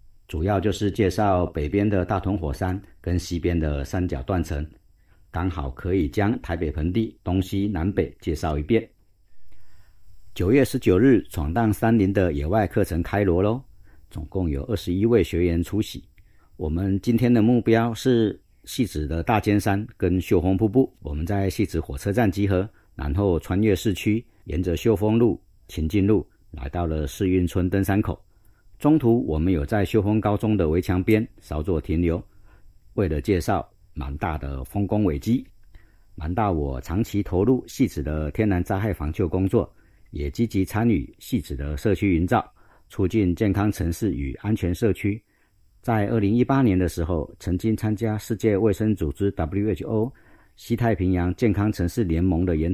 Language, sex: Chinese, male